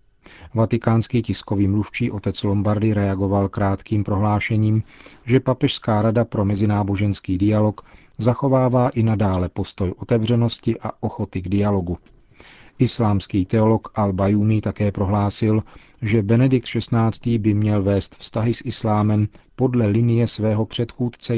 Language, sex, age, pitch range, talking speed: Czech, male, 40-59, 100-115 Hz, 120 wpm